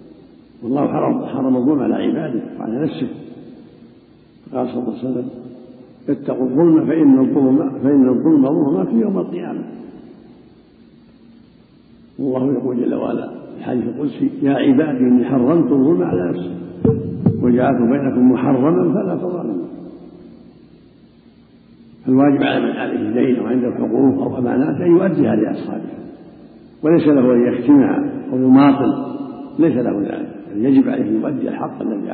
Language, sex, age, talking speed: Arabic, male, 70-89, 130 wpm